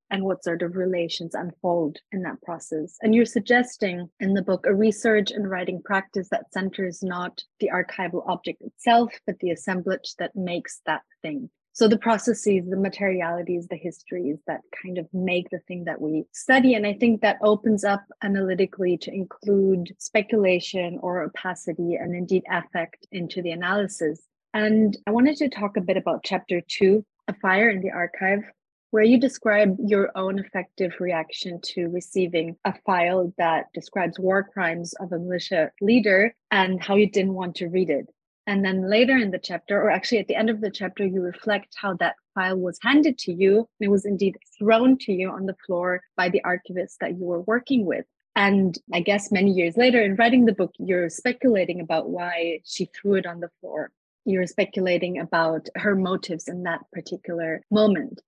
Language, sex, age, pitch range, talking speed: English, female, 30-49, 175-210 Hz, 185 wpm